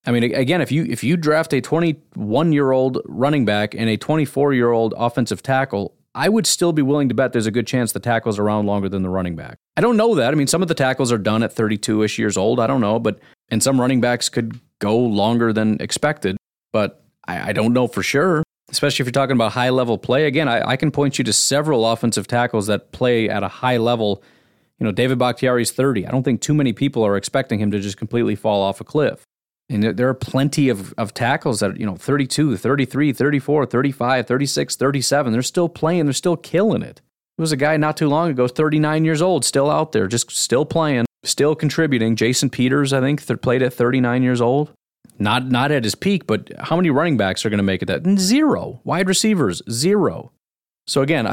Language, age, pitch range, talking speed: English, 30-49, 115-145 Hz, 220 wpm